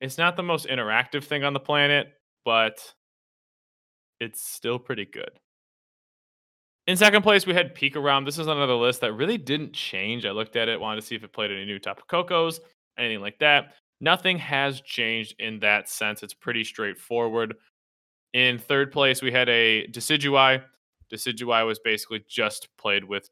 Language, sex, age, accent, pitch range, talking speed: English, male, 20-39, American, 110-145 Hz, 180 wpm